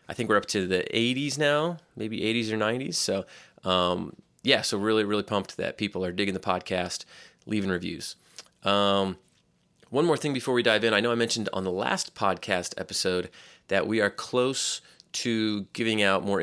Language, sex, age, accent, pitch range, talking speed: English, male, 30-49, American, 90-115 Hz, 190 wpm